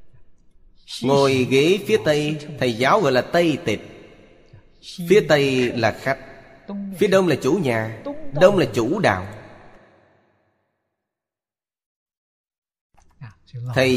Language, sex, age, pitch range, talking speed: Vietnamese, male, 30-49, 110-150 Hz, 105 wpm